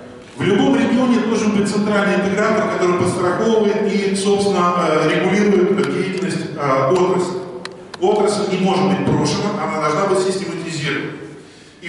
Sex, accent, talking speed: male, native, 120 wpm